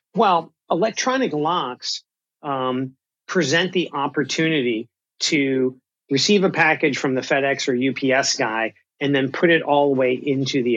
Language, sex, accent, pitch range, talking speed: English, male, American, 130-155 Hz, 145 wpm